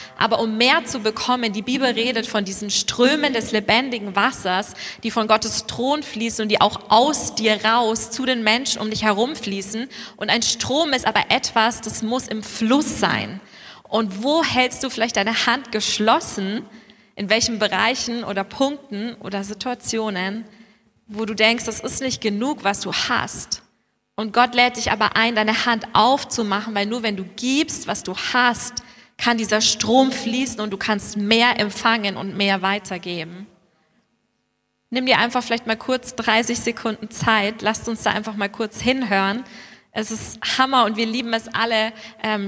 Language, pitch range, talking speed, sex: German, 210-240 Hz, 170 wpm, female